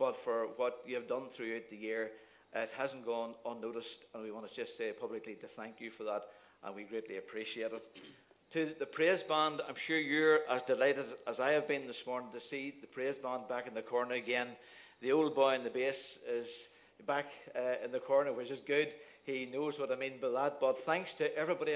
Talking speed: 225 wpm